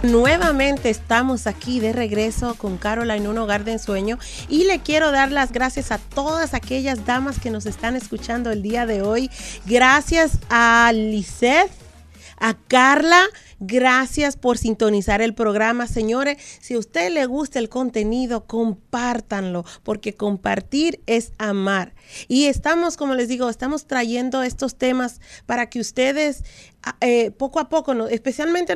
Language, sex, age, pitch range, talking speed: Spanish, female, 40-59, 215-260 Hz, 150 wpm